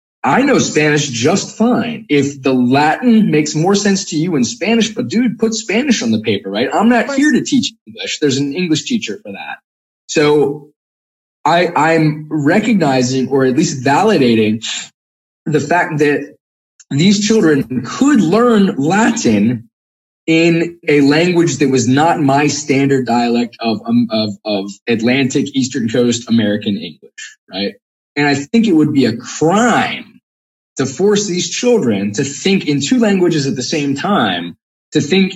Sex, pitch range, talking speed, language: male, 125-200 Hz, 160 wpm, English